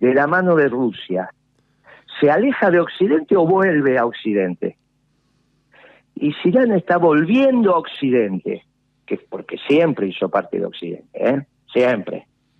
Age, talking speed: 50-69, 140 wpm